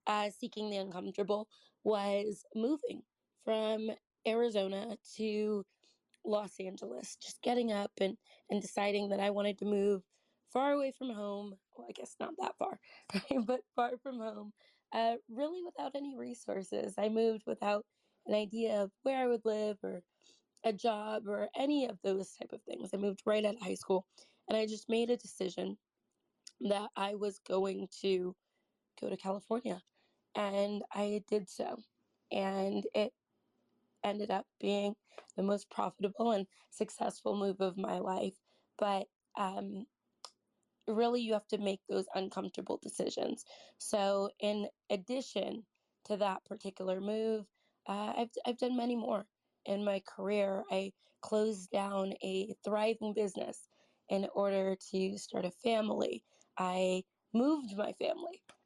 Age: 20-39